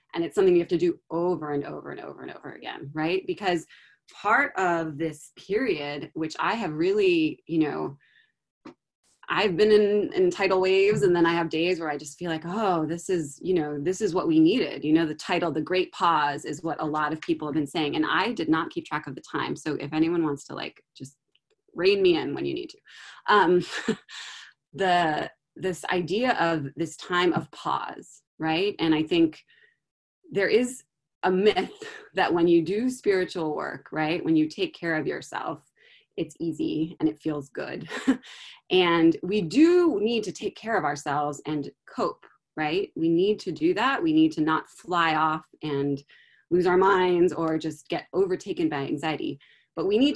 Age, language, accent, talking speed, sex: 20-39, English, American, 195 wpm, female